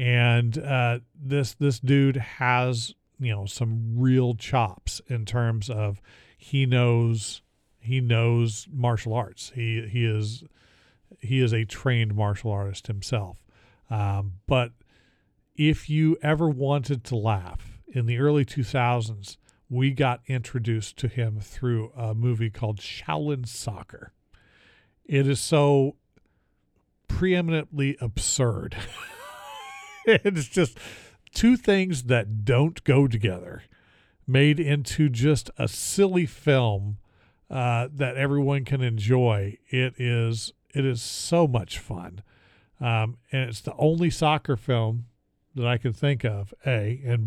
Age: 40-59